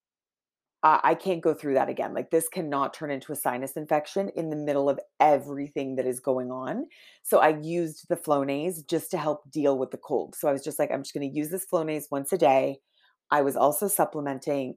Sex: female